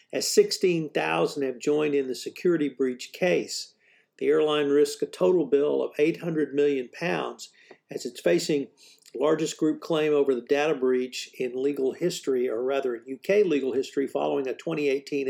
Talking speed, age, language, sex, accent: 160 wpm, 50-69, English, male, American